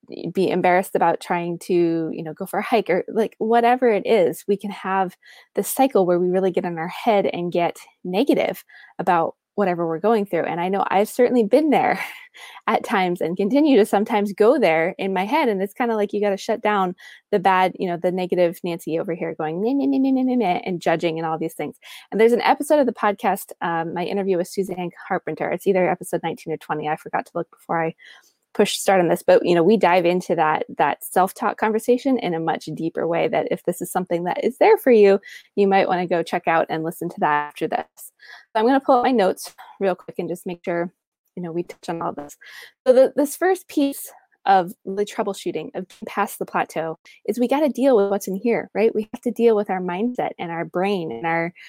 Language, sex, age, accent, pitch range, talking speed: English, female, 20-39, American, 175-220 Hz, 235 wpm